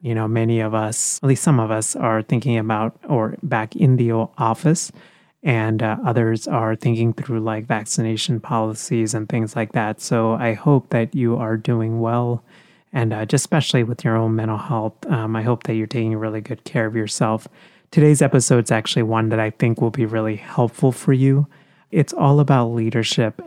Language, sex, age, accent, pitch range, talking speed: English, male, 30-49, American, 110-135 Hz, 195 wpm